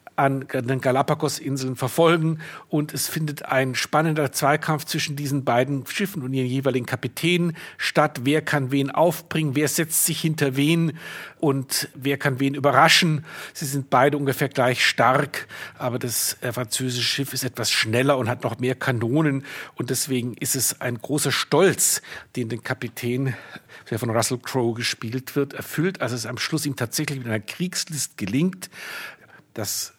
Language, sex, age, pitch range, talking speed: German, male, 60-79, 130-160 Hz, 160 wpm